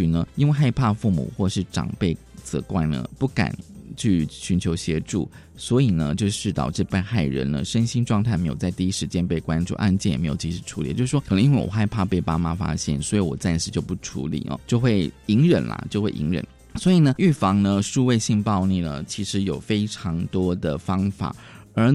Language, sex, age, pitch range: Chinese, male, 20-39, 85-115 Hz